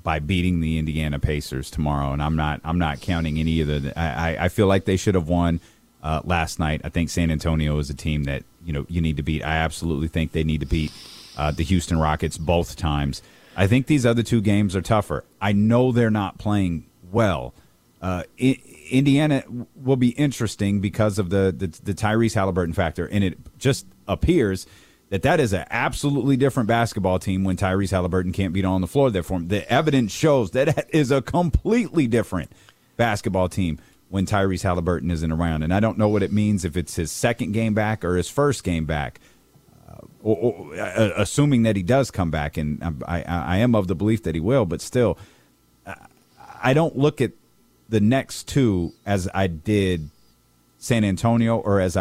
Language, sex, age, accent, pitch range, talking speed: English, male, 30-49, American, 80-115 Hz, 200 wpm